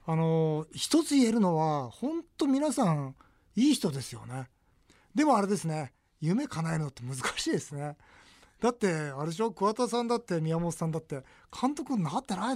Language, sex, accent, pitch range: Japanese, male, native, 135-210 Hz